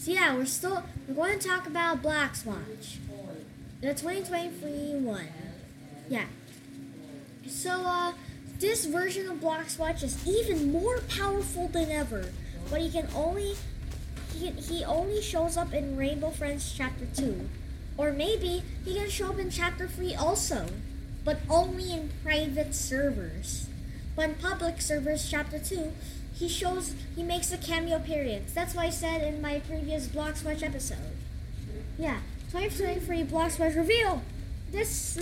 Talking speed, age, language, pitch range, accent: 150 wpm, 10-29, English, 310-365 Hz, American